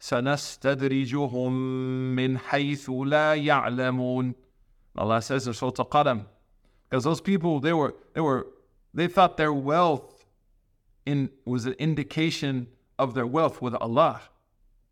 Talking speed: 110 wpm